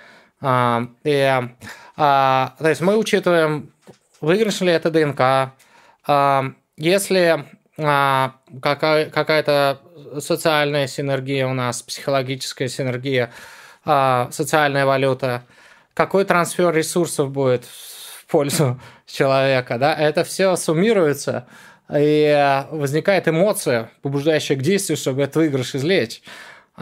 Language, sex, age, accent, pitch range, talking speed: Russian, male, 20-39, native, 135-170 Hz, 90 wpm